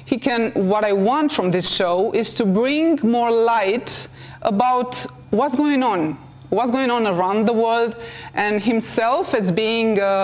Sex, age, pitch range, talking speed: female, 30-49, 200-245 Hz, 165 wpm